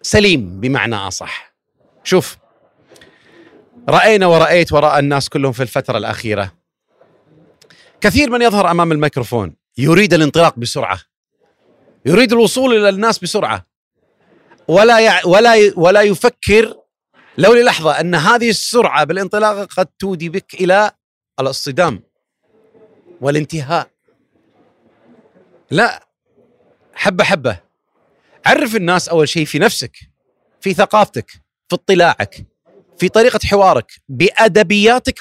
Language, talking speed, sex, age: Arabic, 100 wpm, male, 40-59